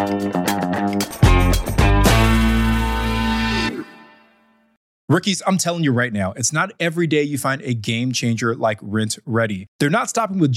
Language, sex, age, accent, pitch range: English, male, 20-39, American, 115-160 Hz